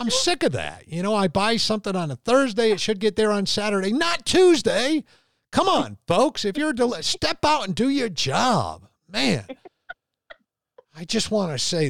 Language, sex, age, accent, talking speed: English, male, 50-69, American, 190 wpm